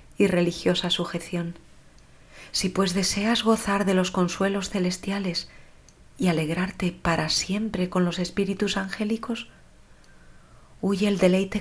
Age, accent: 40-59, Spanish